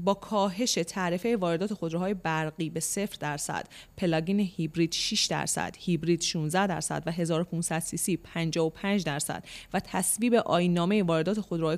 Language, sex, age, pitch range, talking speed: Persian, female, 30-49, 165-210 Hz, 125 wpm